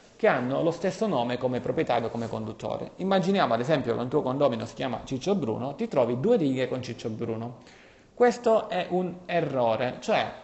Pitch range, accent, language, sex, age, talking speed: 120-160 Hz, native, Italian, male, 30-49, 185 wpm